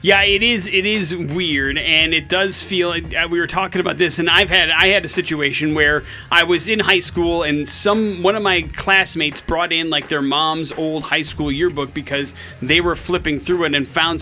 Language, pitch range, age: English, 145-180 Hz, 30-49